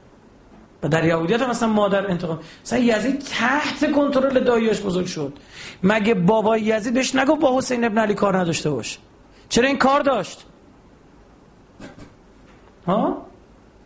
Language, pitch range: Persian, 185-260 Hz